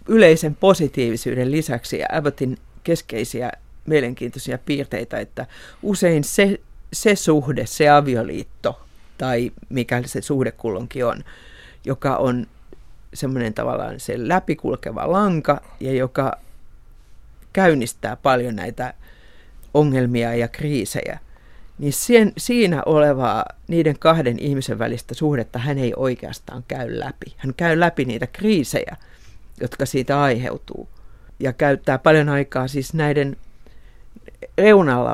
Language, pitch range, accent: Finnish, 125-155 Hz, native